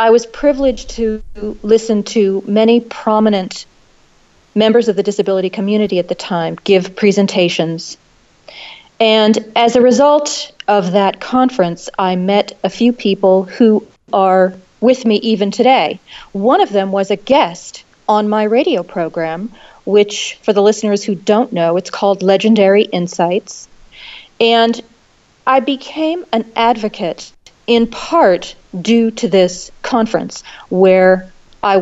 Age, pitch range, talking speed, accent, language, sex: 40-59, 190-230 Hz, 130 wpm, American, English, female